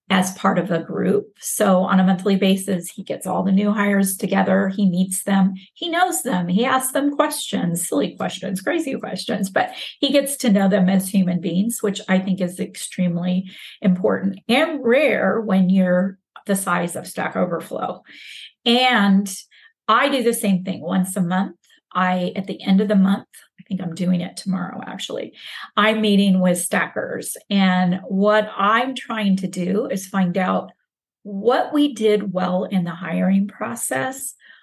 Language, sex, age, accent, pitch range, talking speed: English, female, 30-49, American, 185-225 Hz, 170 wpm